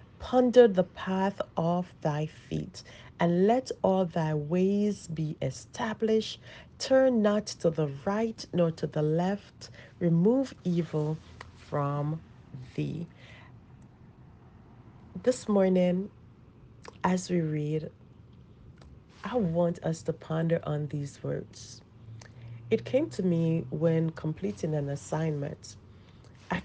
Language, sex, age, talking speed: English, female, 40-59, 110 wpm